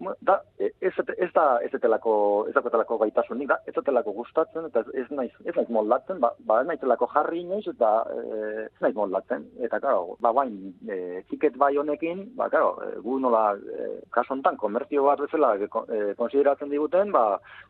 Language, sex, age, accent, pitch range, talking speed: Spanish, male, 30-49, Spanish, 115-145 Hz, 105 wpm